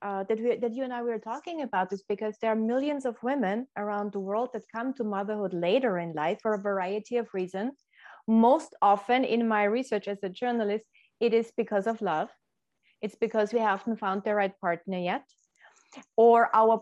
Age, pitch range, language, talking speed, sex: 30-49, 205-245 Hz, English, 200 wpm, female